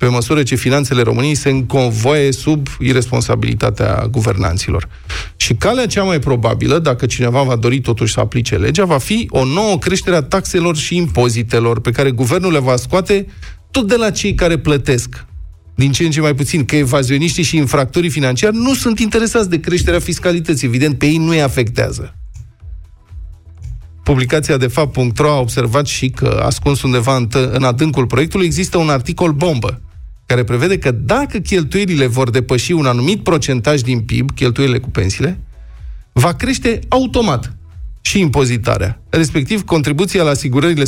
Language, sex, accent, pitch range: Romanian, male, native, 120-165 Hz